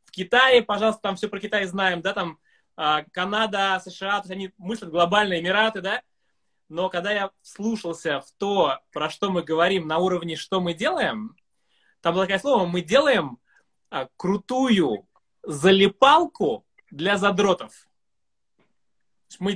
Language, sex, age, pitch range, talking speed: Russian, male, 20-39, 175-210 Hz, 140 wpm